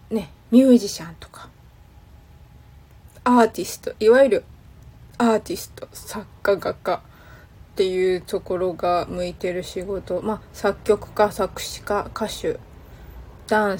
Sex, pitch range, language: female, 190-245 Hz, Japanese